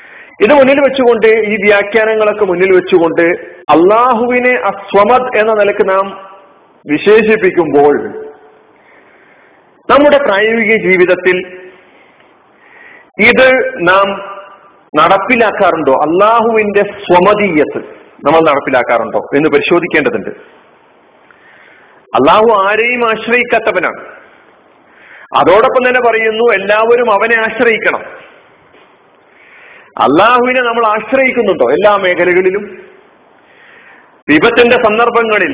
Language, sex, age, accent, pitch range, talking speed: Malayalam, male, 40-59, native, 195-255 Hz, 70 wpm